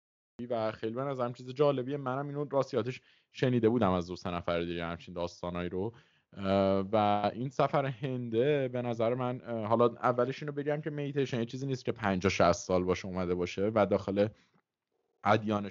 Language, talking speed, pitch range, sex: Persian, 170 wpm, 95-125 Hz, male